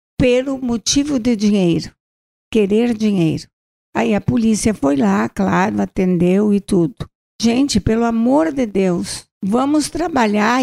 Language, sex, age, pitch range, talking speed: Portuguese, female, 60-79, 200-255 Hz, 125 wpm